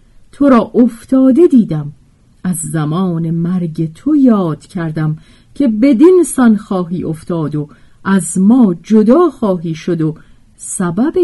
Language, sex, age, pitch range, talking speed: Persian, female, 40-59, 155-245 Hz, 125 wpm